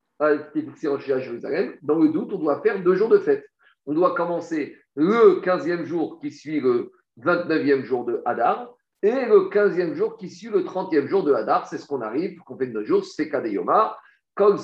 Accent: French